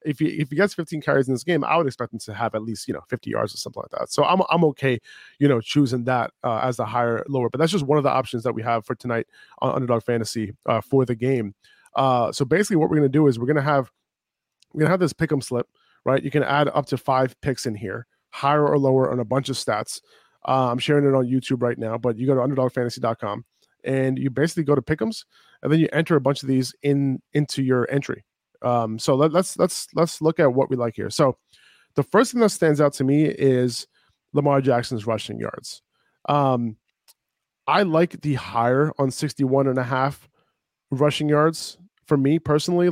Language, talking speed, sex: English, 235 wpm, male